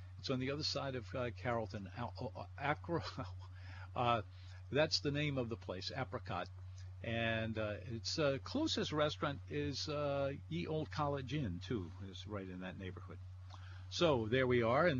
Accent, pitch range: American, 95-120 Hz